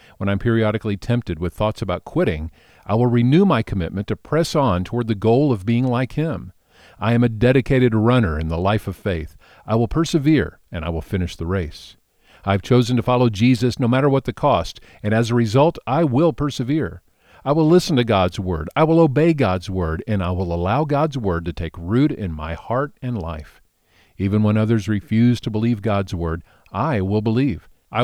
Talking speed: 205 wpm